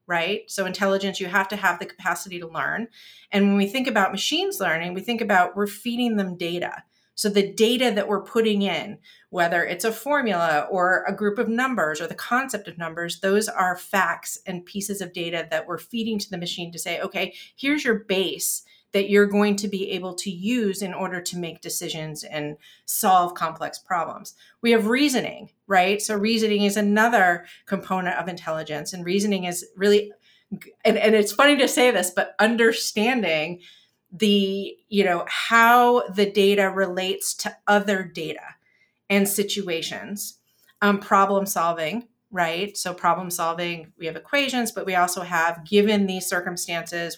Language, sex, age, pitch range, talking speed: English, female, 30-49, 175-215 Hz, 170 wpm